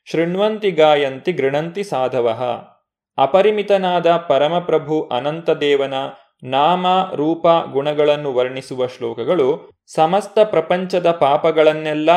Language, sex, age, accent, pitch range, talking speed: Kannada, male, 20-39, native, 145-195 Hz, 80 wpm